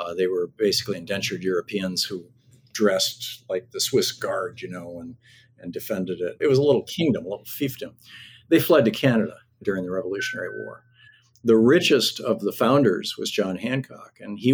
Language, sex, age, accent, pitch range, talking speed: English, male, 50-69, American, 100-125 Hz, 180 wpm